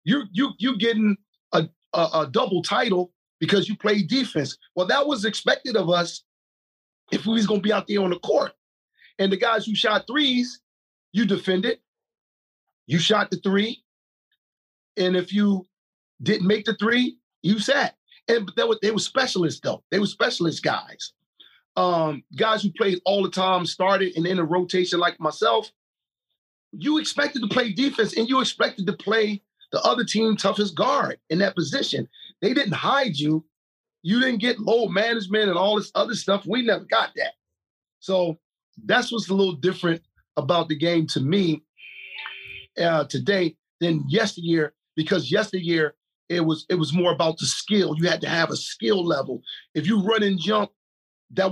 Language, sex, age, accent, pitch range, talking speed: English, male, 40-59, American, 170-210 Hz, 175 wpm